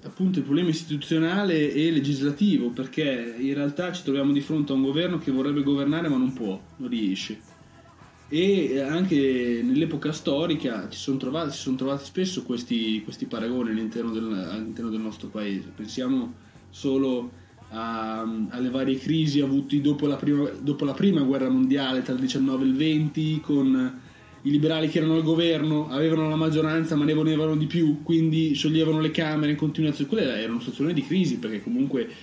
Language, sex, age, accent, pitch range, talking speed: Italian, male, 20-39, native, 130-160 Hz, 175 wpm